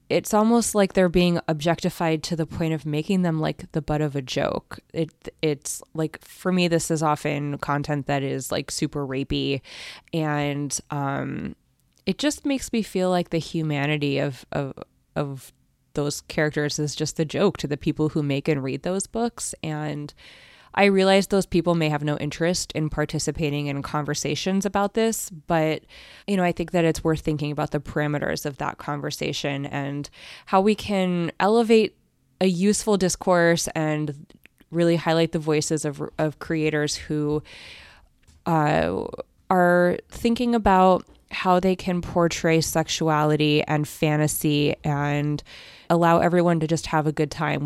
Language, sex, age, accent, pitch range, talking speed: English, female, 20-39, American, 150-175 Hz, 160 wpm